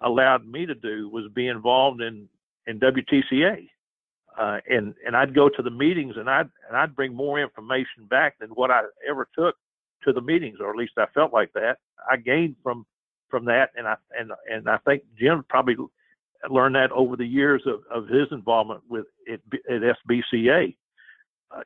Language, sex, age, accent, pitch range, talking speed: English, male, 50-69, American, 120-140 Hz, 190 wpm